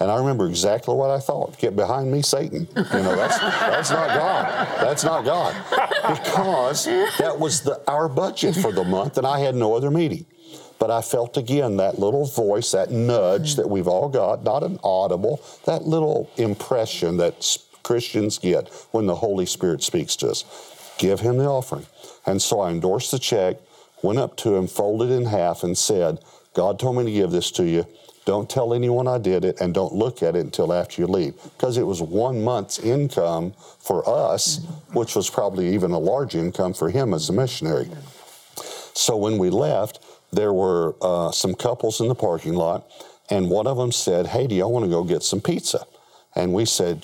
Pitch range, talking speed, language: 95-140 Hz, 200 wpm, English